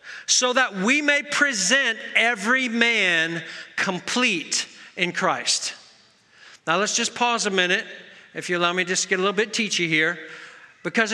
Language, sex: English, male